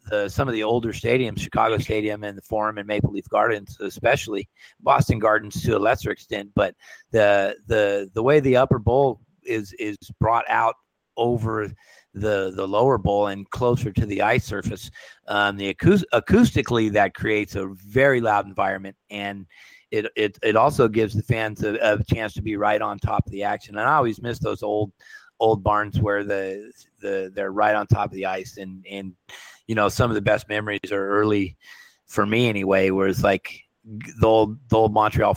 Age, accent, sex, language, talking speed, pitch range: 40-59, American, male, English, 190 wpm, 100-115 Hz